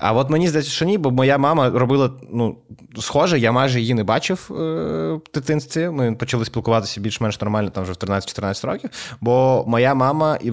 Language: Ukrainian